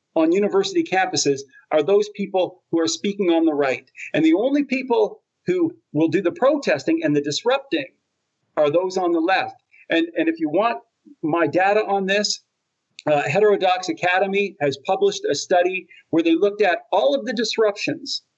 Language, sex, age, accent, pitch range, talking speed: English, male, 40-59, American, 165-275 Hz, 175 wpm